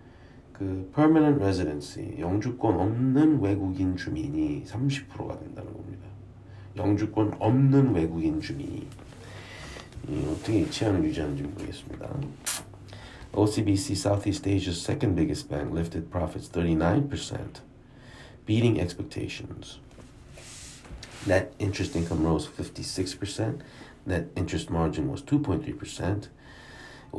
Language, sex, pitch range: Korean, male, 90-125 Hz